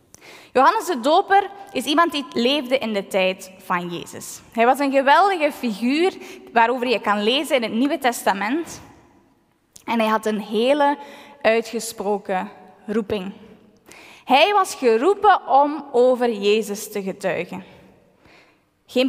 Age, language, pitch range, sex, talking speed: 20-39, Dutch, 205-285 Hz, female, 130 wpm